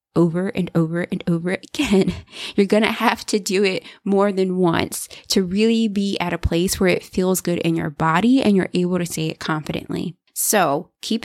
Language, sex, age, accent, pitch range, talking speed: English, female, 20-39, American, 165-205 Hz, 195 wpm